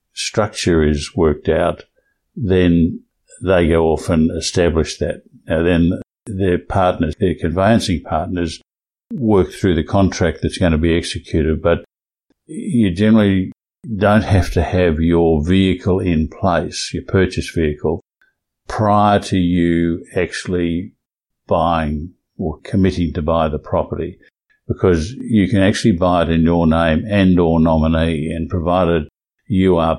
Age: 60-79